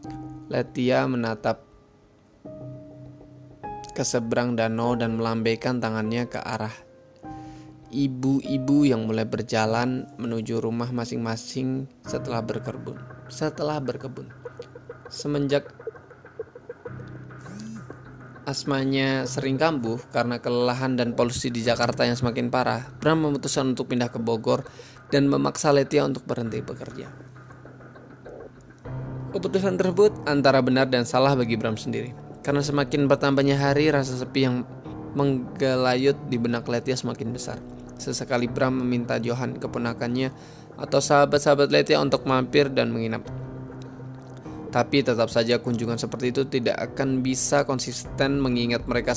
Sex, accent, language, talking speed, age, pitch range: male, native, Indonesian, 110 wpm, 20-39, 120-140 Hz